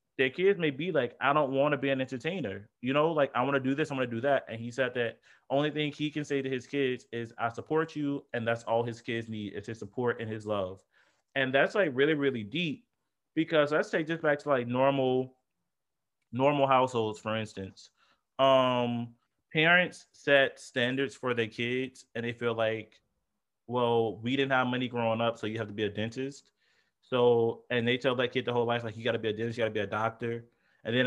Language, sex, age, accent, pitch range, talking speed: English, male, 20-39, American, 110-135 Hz, 230 wpm